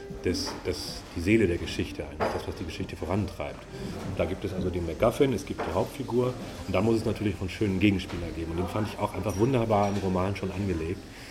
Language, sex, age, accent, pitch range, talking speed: German, male, 40-59, German, 90-110 Hz, 230 wpm